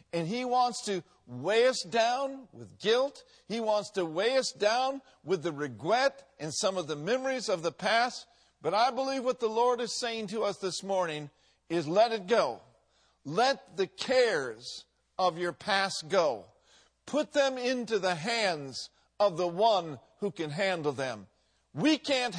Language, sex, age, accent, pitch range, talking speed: English, male, 50-69, American, 175-245 Hz, 170 wpm